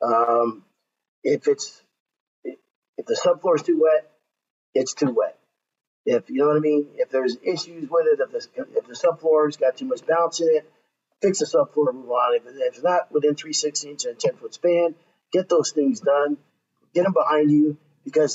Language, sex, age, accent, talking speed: English, male, 50-69, American, 195 wpm